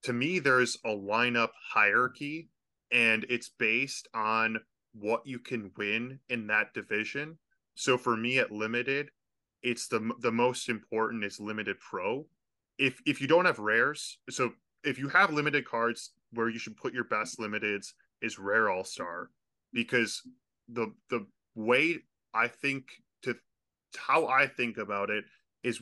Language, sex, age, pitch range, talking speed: English, male, 10-29, 110-130 Hz, 150 wpm